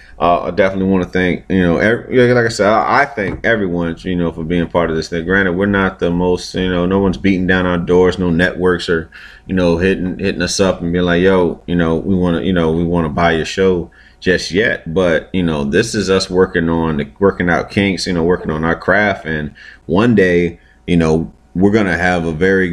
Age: 30-49